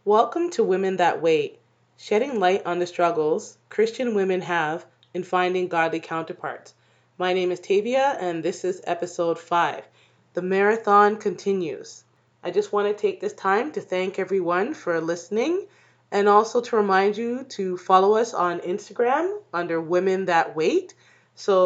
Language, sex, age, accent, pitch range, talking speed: English, female, 20-39, American, 175-250 Hz, 155 wpm